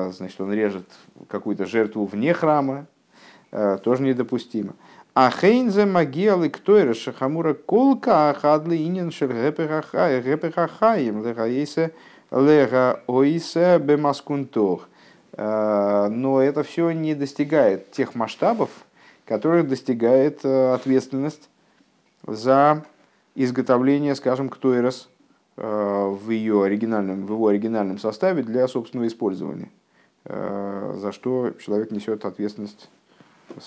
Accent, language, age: native, Russian, 50-69